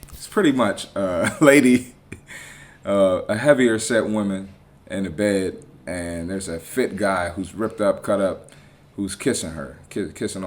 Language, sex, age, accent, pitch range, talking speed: English, male, 30-49, American, 85-110 Hz, 160 wpm